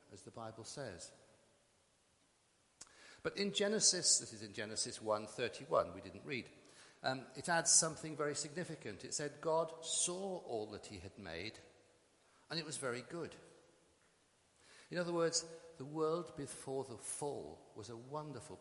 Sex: male